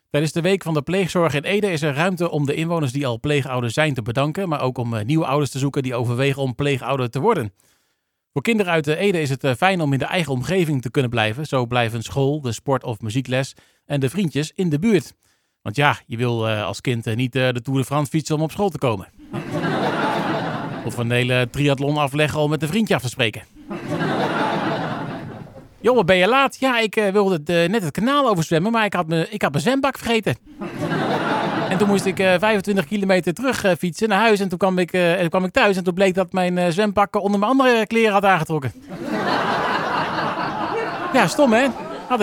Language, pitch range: Dutch, 130-190 Hz